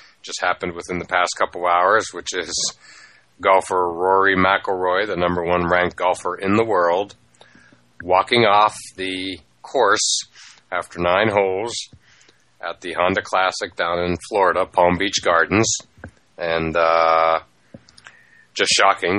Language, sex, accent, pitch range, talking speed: English, male, American, 80-95 Hz, 130 wpm